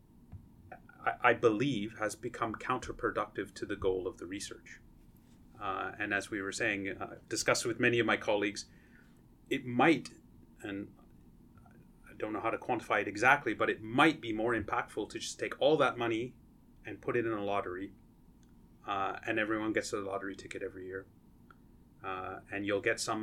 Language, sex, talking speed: English, male, 175 wpm